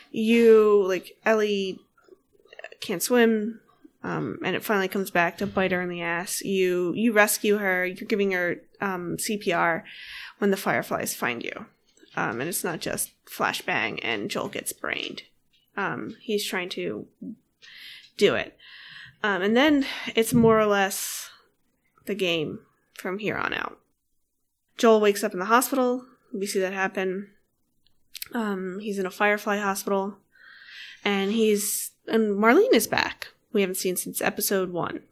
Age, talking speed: 20-39, 150 wpm